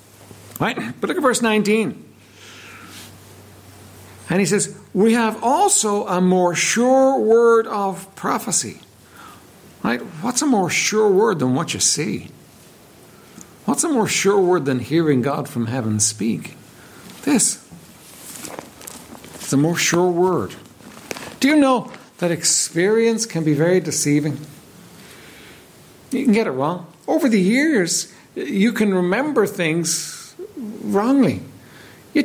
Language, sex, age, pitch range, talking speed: English, male, 60-79, 160-225 Hz, 125 wpm